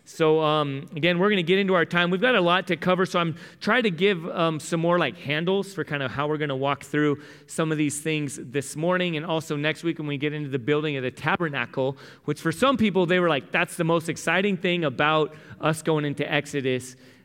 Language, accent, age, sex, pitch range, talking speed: English, American, 30-49, male, 130-170 Hz, 245 wpm